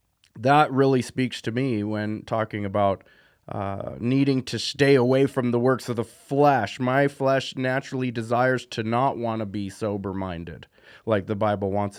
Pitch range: 110-130 Hz